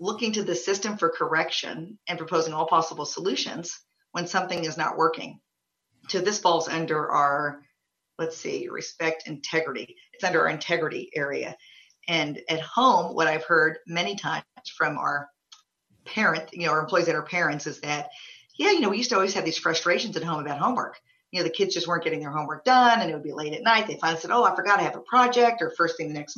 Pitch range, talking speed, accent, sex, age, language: 160-200 Hz, 220 wpm, American, female, 50-69, English